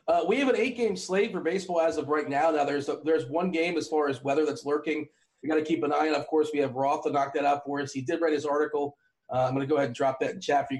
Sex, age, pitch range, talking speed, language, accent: male, 30-49, 135-170 Hz, 335 wpm, English, American